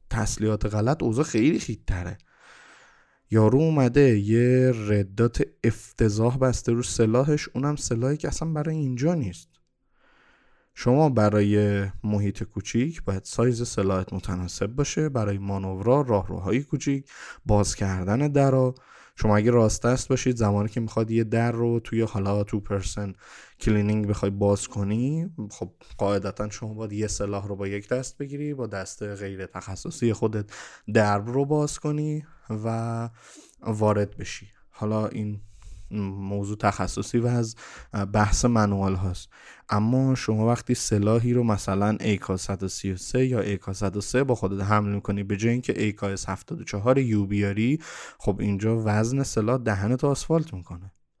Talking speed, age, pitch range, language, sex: 135 wpm, 20-39, 100-125 Hz, Persian, male